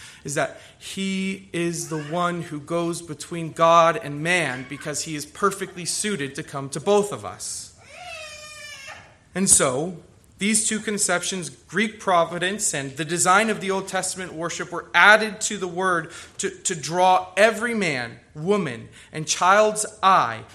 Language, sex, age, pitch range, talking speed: English, male, 30-49, 120-180 Hz, 150 wpm